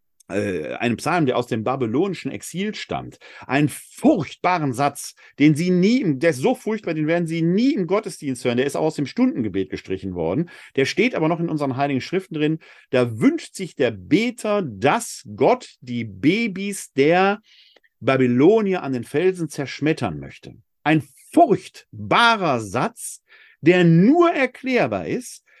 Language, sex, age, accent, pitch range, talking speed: German, male, 50-69, German, 130-200 Hz, 150 wpm